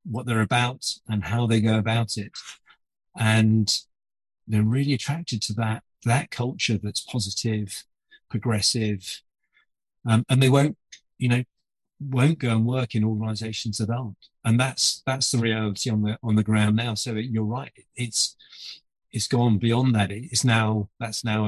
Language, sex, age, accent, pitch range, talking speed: English, male, 40-59, British, 105-120 Hz, 160 wpm